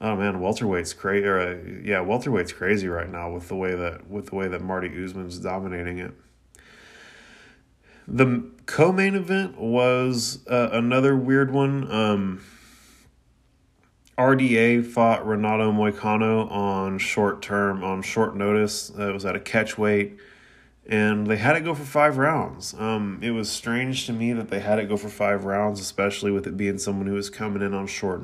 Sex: male